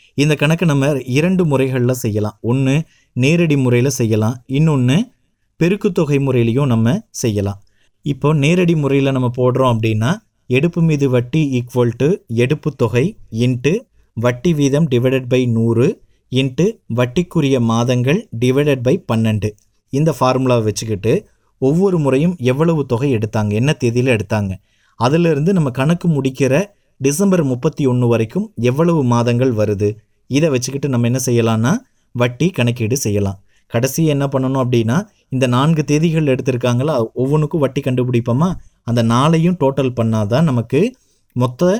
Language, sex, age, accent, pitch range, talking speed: Tamil, male, 30-49, native, 115-145 Hz, 115 wpm